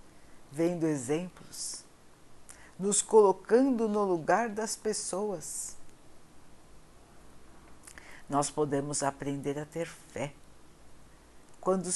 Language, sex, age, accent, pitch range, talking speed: Portuguese, female, 60-79, Brazilian, 145-210 Hz, 75 wpm